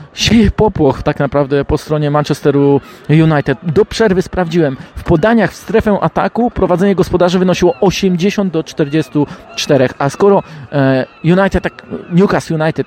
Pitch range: 130-165 Hz